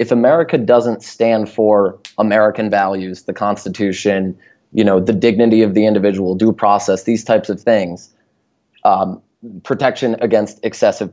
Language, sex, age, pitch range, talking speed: English, male, 20-39, 100-125 Hz, 140 wpm